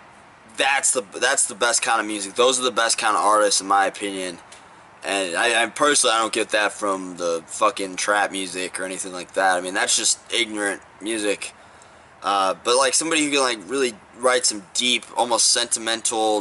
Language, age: English, 20-39